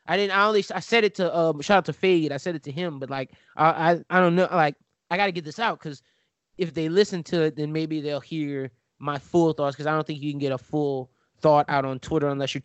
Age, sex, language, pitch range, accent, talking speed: 20-39, male, English, 135-160 Hz, American, 280 wpm